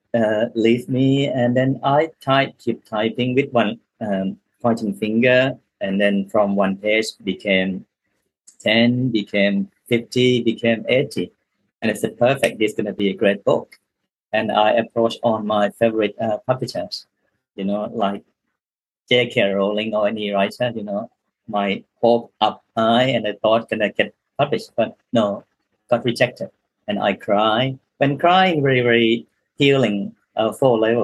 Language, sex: English, male